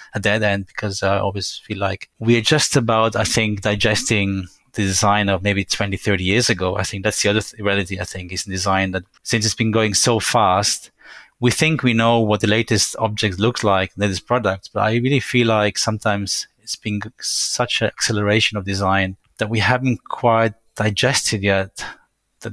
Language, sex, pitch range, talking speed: English, male, 100-115 Hz, 195 wpm